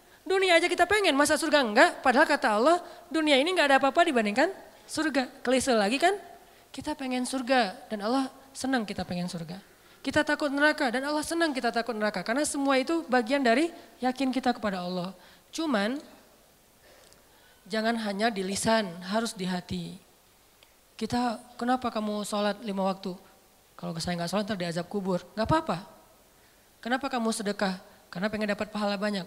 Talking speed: 160 wpm